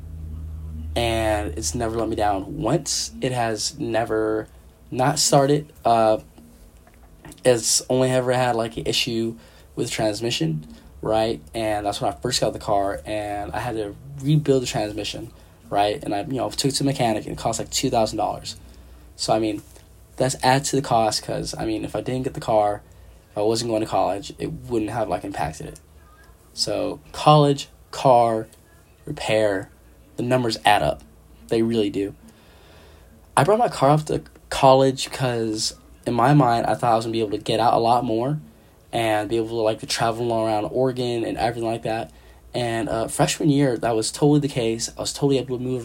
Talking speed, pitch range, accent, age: 190 wpm, 100-125 Hz, American, 10-29